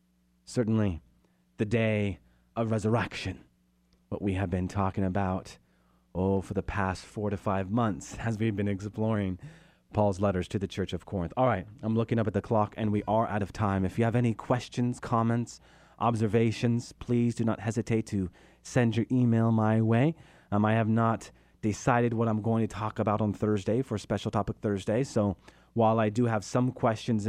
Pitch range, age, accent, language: 100-120 Hz, 30-49, American, English